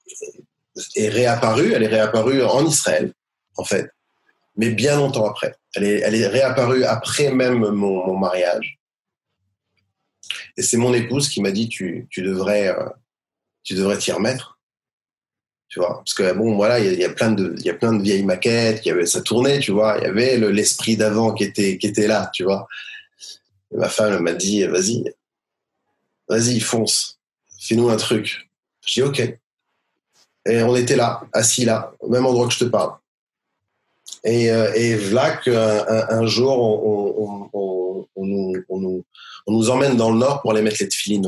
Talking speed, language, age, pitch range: 185 wpm, French, 30-49, 100-125 Hz